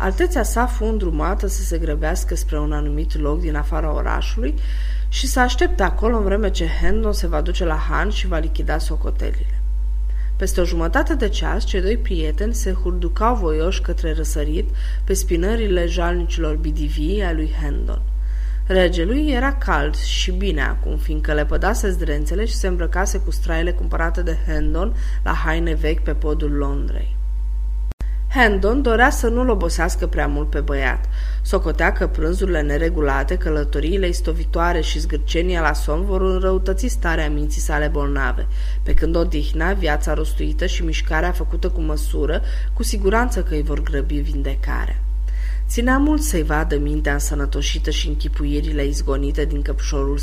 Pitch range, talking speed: 145-185 Hz, 155 wpm